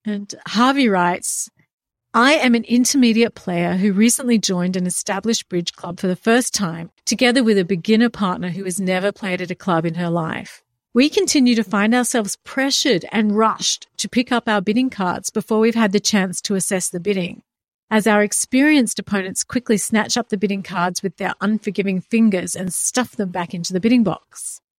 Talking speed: 190 wpm